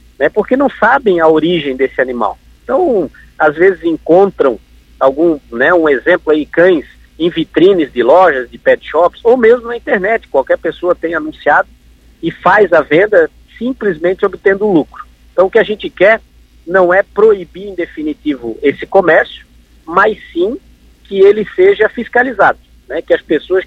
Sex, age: male, 50-69